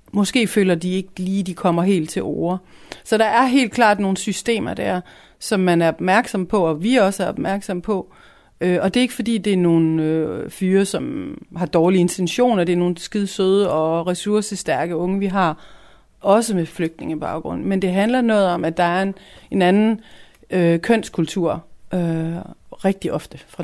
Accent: native